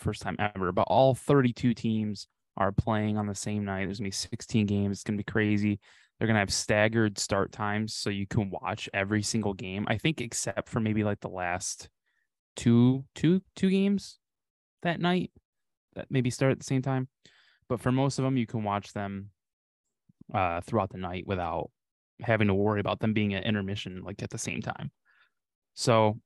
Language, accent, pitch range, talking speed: English, American, 100-115 Hz, 190 wpm